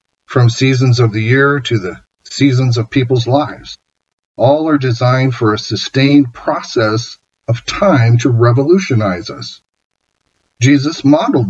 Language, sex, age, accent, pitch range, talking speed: English, male, 50-69, American, 120-145 Hz, 130 wpm